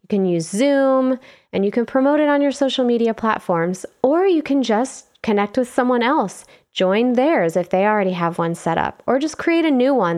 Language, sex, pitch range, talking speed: English, female, 190-265 Hz, 220 wpm